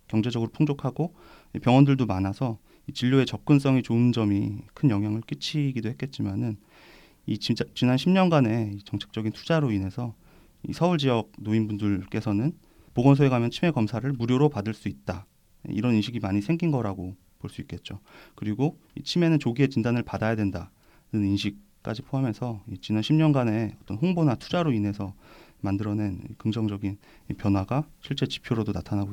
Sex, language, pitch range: male, Korean, 100-135 Hz